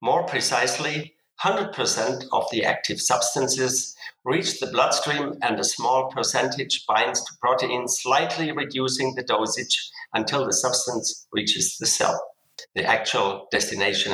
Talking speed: 125 wpm